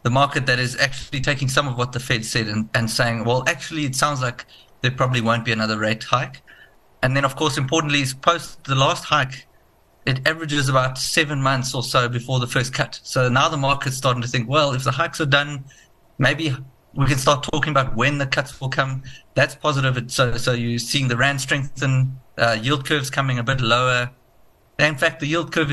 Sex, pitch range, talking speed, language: male, 125-145 Hz, 220 wpm, English